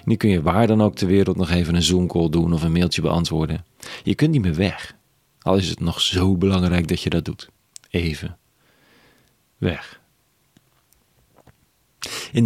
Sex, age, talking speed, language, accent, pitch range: male, 40-59, 170 wpm, Dutch, Dutch, 90-105 Hz